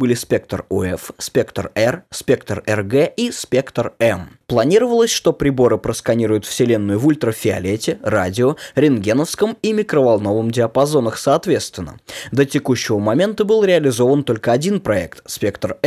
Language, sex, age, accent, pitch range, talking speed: Russian, male, 20-39, native, 115-175 Hz, 120 wpm